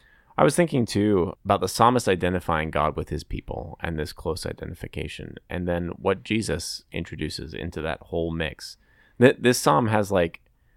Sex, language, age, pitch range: male, English, 20-39, 80-95 Hz